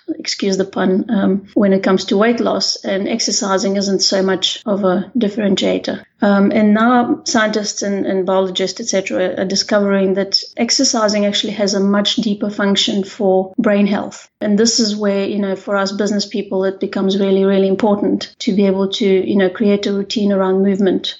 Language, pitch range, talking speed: English, 190-210 Hz, 185 wpm